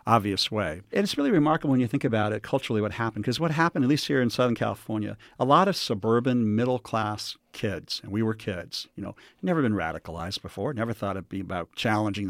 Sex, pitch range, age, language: male, 105-125 Hz, 50-69, English